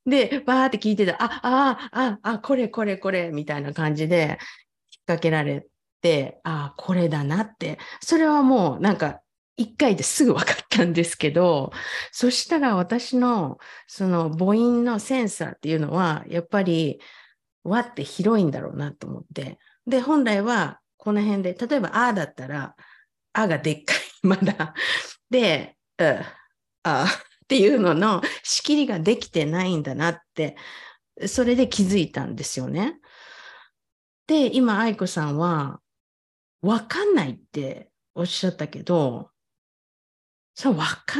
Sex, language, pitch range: female, Japanese, 160-235 Hz